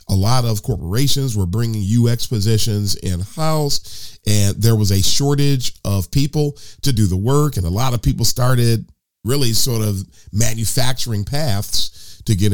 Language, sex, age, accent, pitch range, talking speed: English, male, 40-59, American, 95-125 Hz, 160 wpm